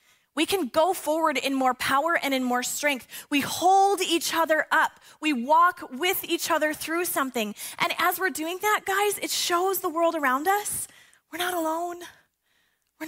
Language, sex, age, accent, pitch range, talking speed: English, female, 20-39, American, 250-350 Hz, 180 wpm